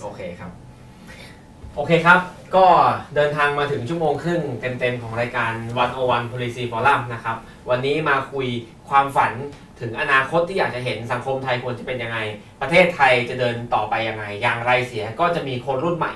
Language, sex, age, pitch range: Thai, male, 20-39, 125-165 Hz